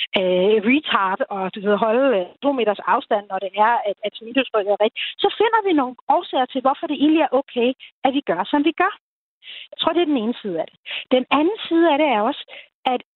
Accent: native